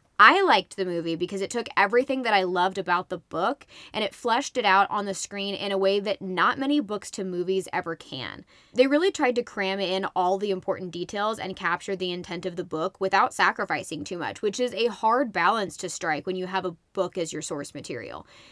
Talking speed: 225 wpm